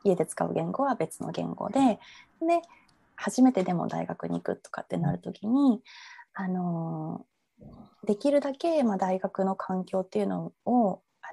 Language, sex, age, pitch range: Japanese, female, 20-39, 180-250 Hz